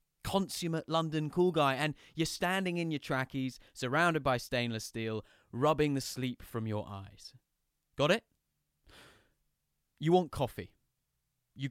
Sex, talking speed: male, 135 wpm